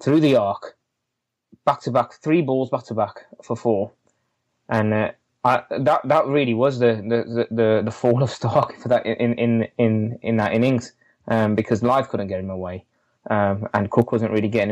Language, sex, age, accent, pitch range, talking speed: English, male, 20-39, British, 110-130 Hz, 195 wpm